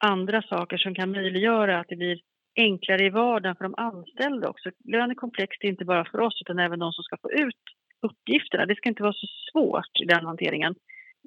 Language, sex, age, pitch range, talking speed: Swedish, female, 30-49, 180-220 Hz, 215 wpm